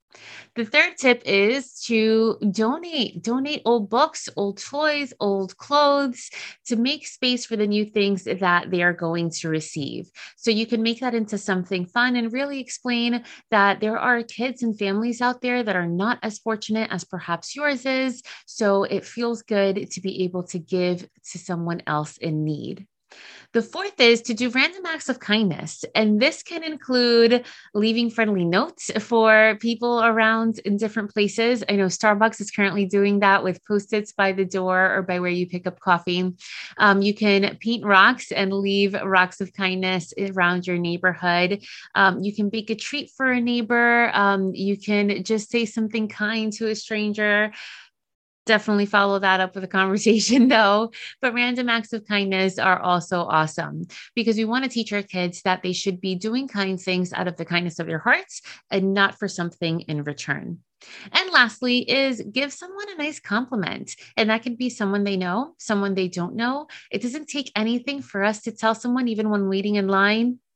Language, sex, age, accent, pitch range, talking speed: English, female, 30-49, American, 190-240 Hz, 185 wpm